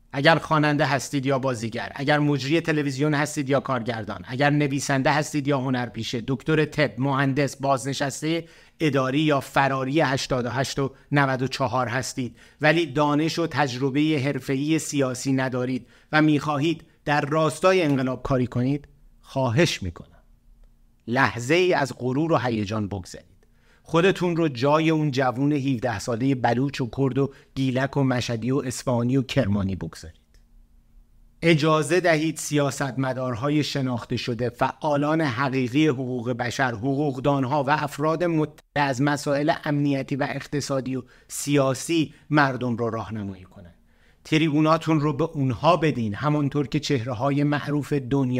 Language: Persian